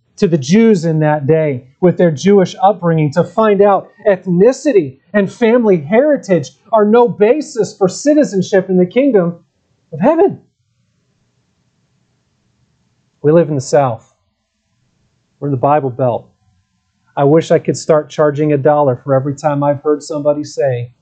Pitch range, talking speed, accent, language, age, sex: 130-170 Hz, 150 wpm, American, English, 40-59, male